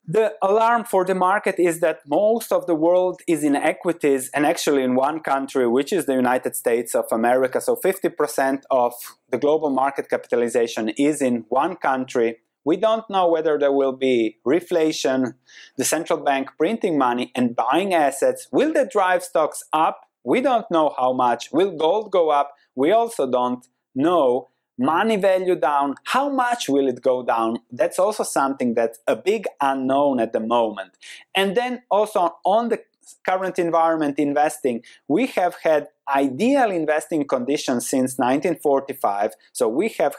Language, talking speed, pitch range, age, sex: English, 165 wpm, 130-190 Hz, 30-49, male